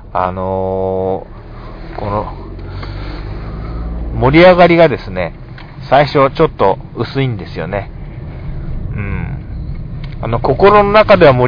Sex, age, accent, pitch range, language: male, 40-59, native, 115-155 Hz, Japanese